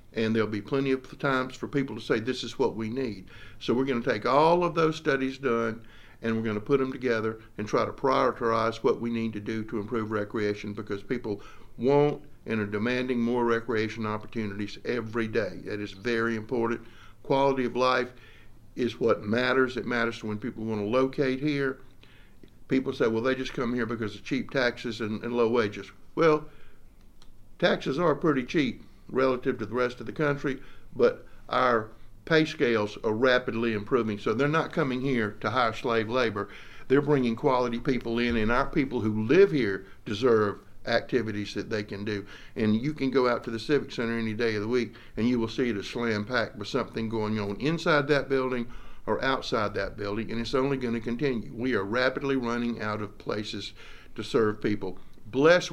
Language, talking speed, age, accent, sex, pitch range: English, 195 wpm, 60-79, American, male, 110-130 Hz